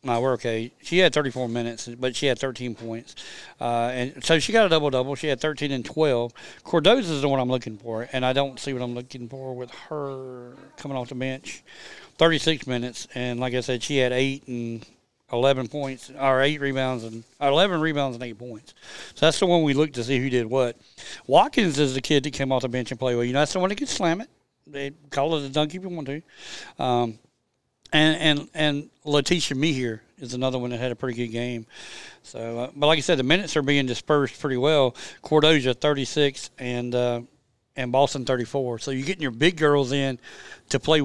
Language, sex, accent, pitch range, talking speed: English, male, American, 125-155 Hz, 220 wpm